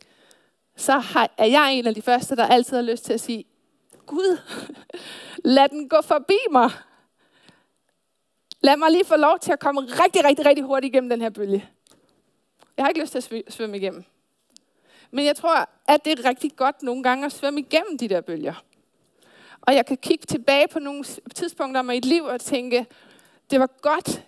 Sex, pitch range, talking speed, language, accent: female, 235-295 Hz, 195 wpm, Danish, native